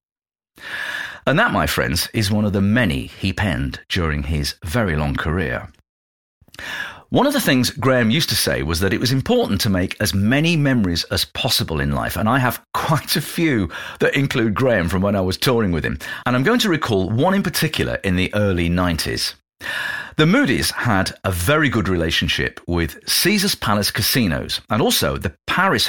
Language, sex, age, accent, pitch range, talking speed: English, male, 50-69, British, 85-120 Hz, 190 wpm